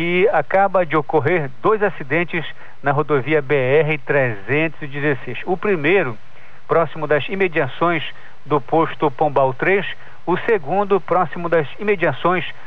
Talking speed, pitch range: 115 wpm, 150-185 Hz